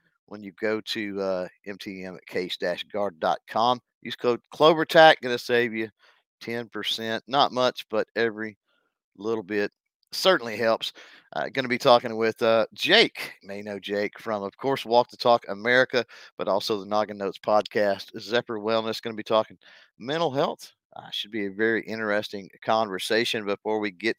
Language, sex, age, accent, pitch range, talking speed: English, male, 50-69, American, 100-120 Hz, 165 wpm